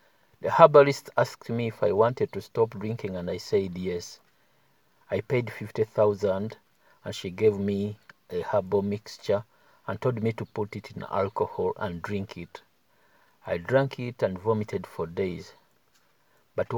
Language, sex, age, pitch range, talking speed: English, male, 50-69, 100-130 Hz, 155 wpm